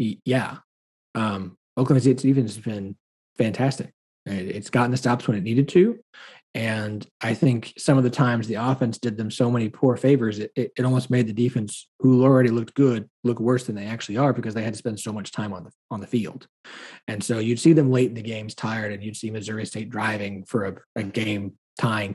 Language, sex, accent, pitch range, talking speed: English, male, American, 110-145 Hz, 215 wpm